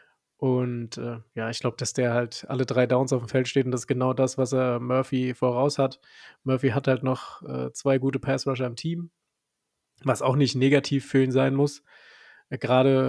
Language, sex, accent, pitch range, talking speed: German, male, German, 125-140 Hz, 200 wpm